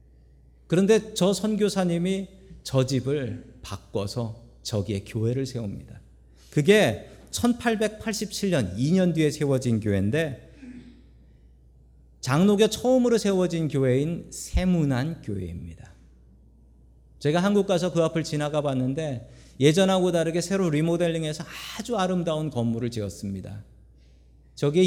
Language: Korean